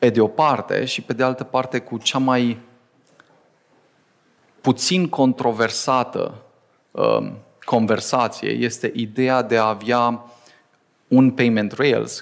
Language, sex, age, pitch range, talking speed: Romanian, male, 30-49, 115-135 Hz, 115 wpm